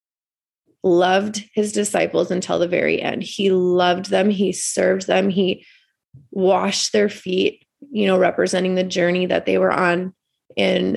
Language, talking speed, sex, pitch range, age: English, 150 wpm, female, 180-200 Hz, 20-39